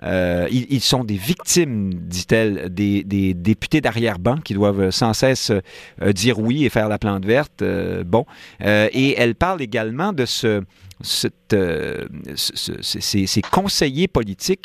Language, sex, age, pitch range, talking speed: French, male, 50-69, 105-140 Hz, 165 wpm